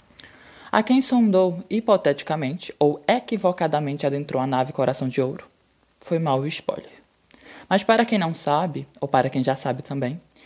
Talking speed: 150 wpm